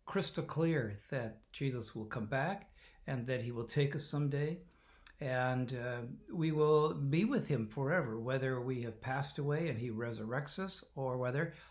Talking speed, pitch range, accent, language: 170 wpm, 130-175 Hz, American, English